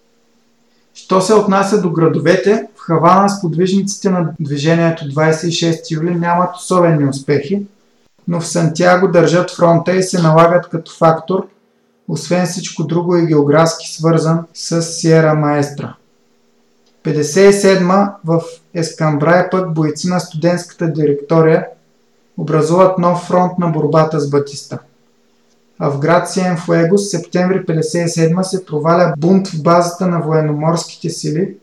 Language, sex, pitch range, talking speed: Bulgarian, male, 155-180 Hz, 125 wpm